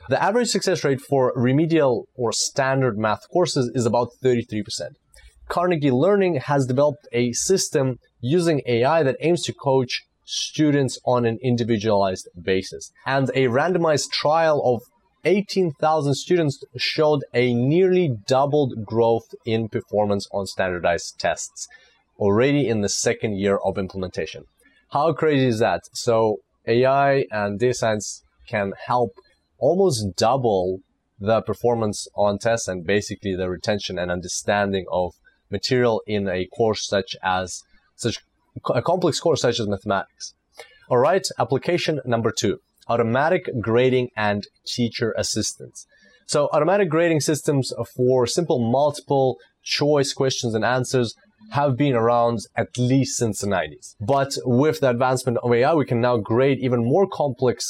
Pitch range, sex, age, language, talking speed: 110-145 Hz, male, 30-49, English, 140 wpm